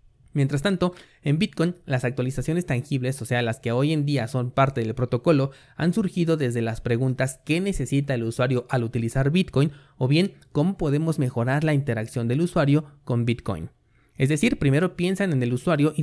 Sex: male